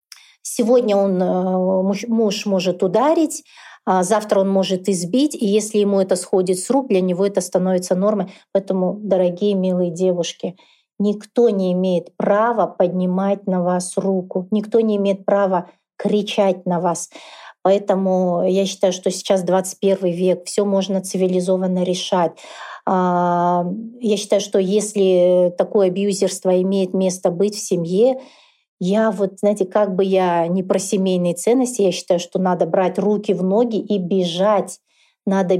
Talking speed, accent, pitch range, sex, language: 140 wpm, native, 185-205 Hz, female, Russian